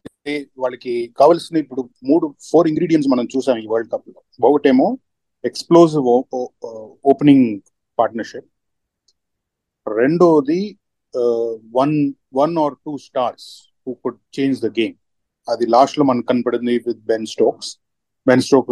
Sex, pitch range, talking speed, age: male, 120-155 Hz, 75 wpm, 30-49